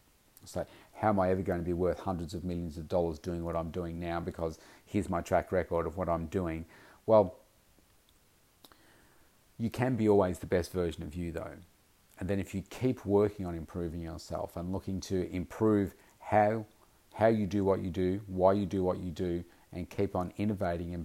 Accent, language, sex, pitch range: Australian, English, male, 85-105 Hz